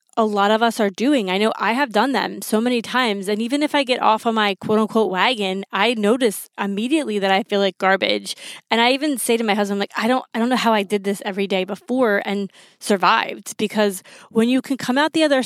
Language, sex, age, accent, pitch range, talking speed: English, female, 20-39, American, 200-245 Hz, 250 wpm